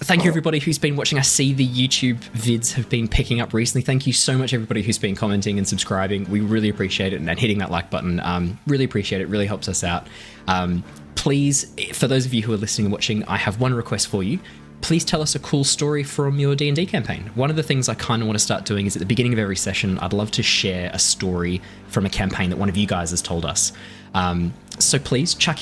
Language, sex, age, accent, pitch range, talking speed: English, male, 20-39, Australian, 95-130 Hz, 260 wpm